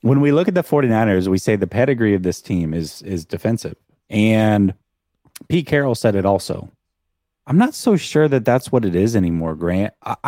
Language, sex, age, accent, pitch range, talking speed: English, male, 30-49, American, 95-135 Hz, 200 wpm